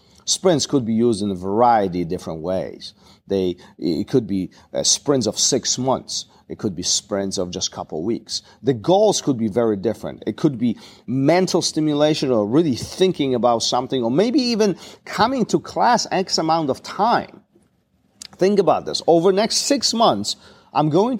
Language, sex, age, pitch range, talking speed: English, male, 40-59, 110-180 Hz, 180 wpm